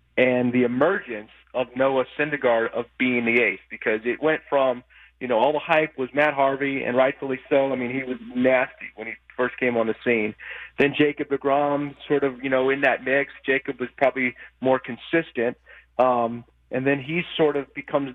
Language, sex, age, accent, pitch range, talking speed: English, male, 40-59, American, 120-140 Hz, 195 wpm